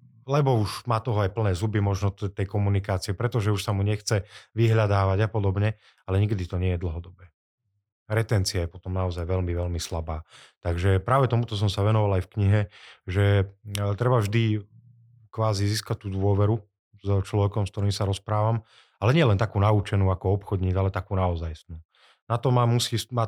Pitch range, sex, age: 95-110 Hz, male, 30-49